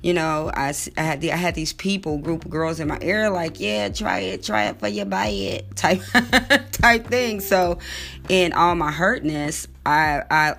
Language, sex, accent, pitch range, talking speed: English, female, American, 145-185 Hz, 185 wpm